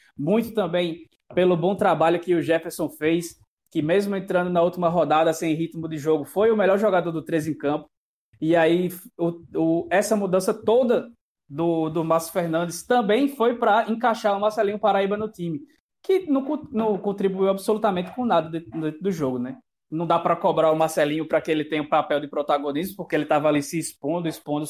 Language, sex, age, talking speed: Portuguese, male, 20-39, 195 wpm